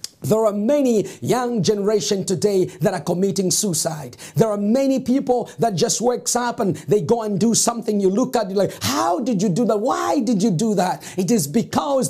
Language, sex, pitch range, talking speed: English, male, 185-245 Hz, 210 wpm